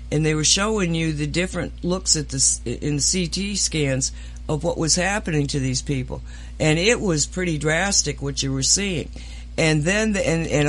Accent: American